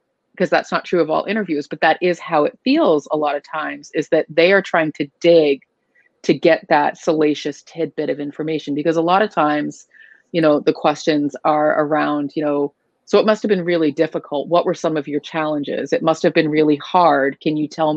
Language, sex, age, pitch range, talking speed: English, female, 30-49, 150-180 Hz, 215 wpm